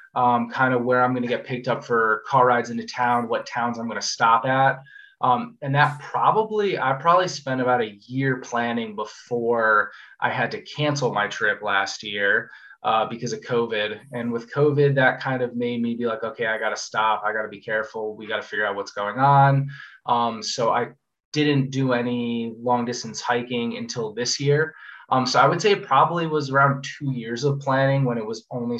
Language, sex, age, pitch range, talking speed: English, male, 20-39, 115-140 Hz, 215 wpm